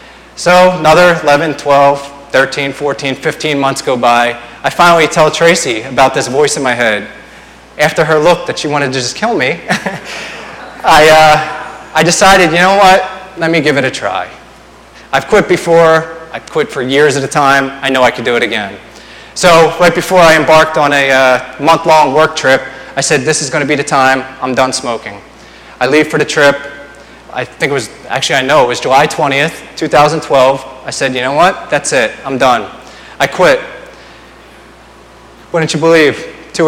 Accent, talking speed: American, 185 wpm